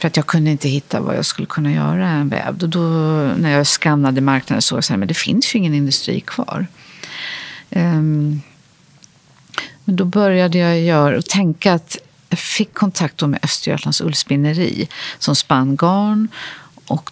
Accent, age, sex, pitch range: native, 50-69, female, 150-180 Hz